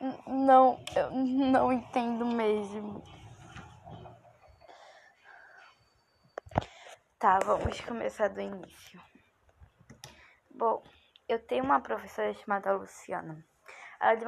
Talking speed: 85 wpm